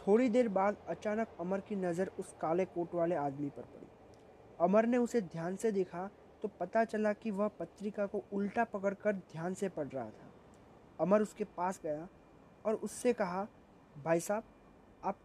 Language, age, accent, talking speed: Hindi, 20-39, native, 175 wpm